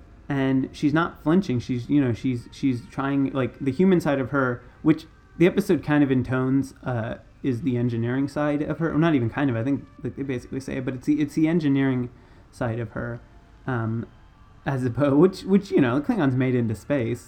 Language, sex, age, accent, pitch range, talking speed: English, male, 30-49, American, 120-150 Hz, 210 wpm